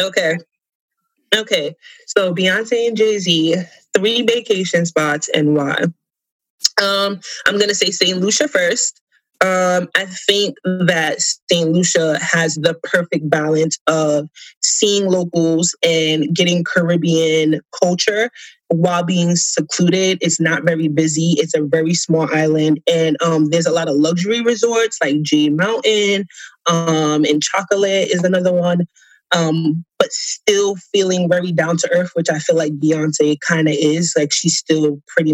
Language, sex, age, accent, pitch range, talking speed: English, female, 20-39, American, 160-205 Hz, 145 wpm